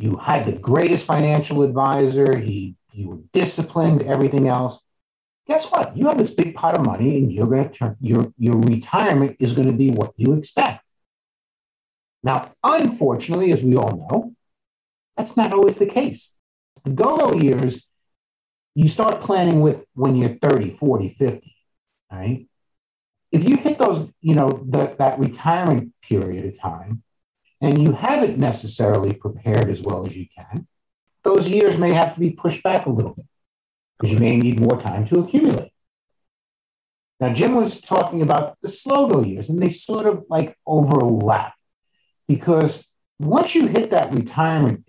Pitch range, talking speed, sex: 115-185 Hz, 160 wpm, male